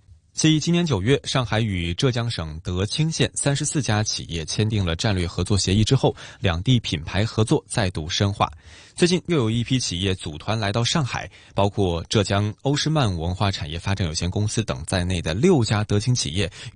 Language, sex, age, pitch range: Chinese, male, 20-39, 95-130 Hz